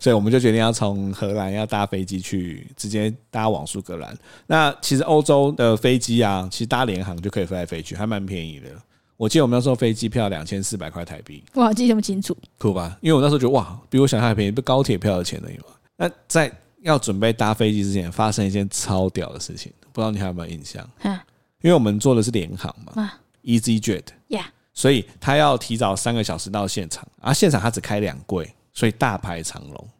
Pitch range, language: 95-125 Hz, Chinese